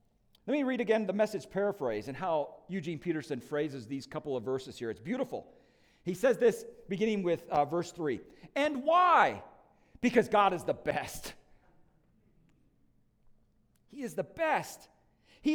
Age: 40-59